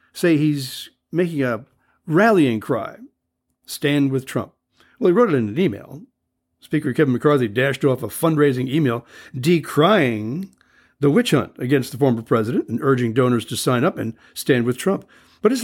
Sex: male